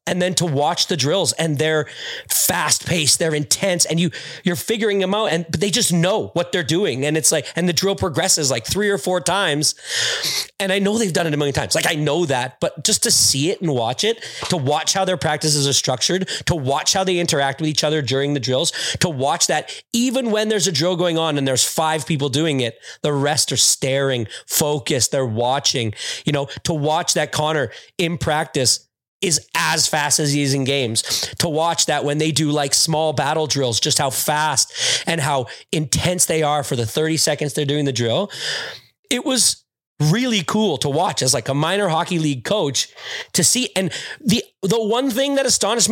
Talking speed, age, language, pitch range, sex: 215 wpm, 30-49, English, 145-185 Hz, male